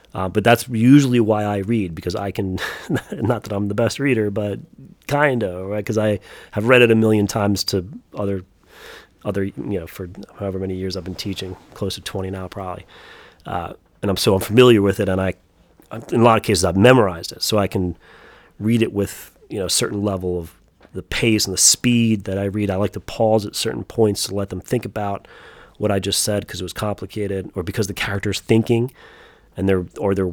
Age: 30-49